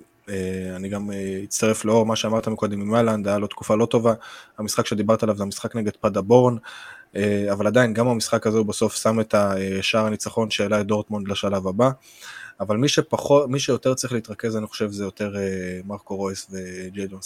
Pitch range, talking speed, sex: 100-110 Hz, 200 wpm, male